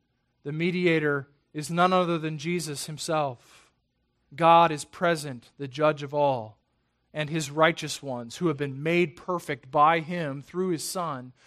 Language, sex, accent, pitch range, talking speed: English, male, American, 145-195 Hz, 150 wpm